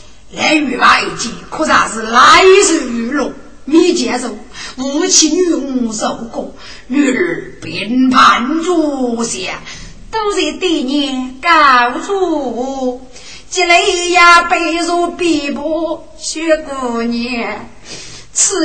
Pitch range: 275-345 Hz